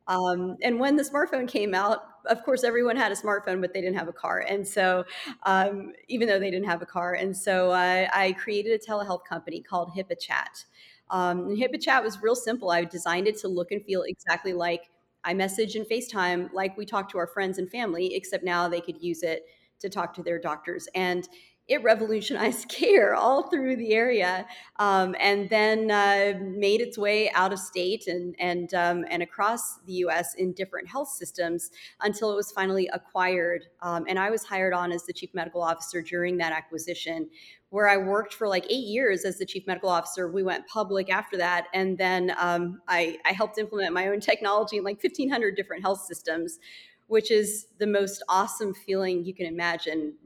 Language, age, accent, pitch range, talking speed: English, 30-49, American, 175-210 Hz, 195 wpm